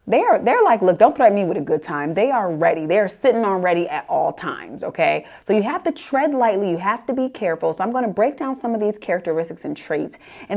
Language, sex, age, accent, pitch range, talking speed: English, female, 30-49, American, 170-220 Hz, 265 wpm